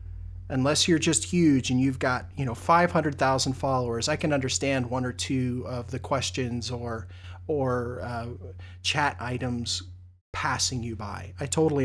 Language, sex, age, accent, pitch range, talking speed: English, male, 30-49, American, 95-145 Hz, 150 wpm